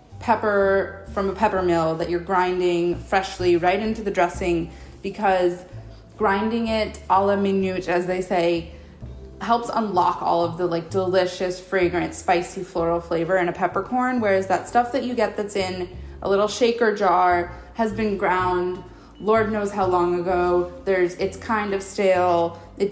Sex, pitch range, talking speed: female, 175-220 Hz, 160 wpm